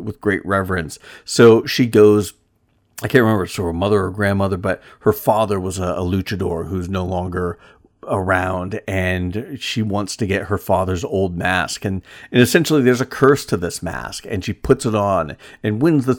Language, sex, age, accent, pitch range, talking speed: English, male, 50-69, American, 95-115 Hz, 195 wpm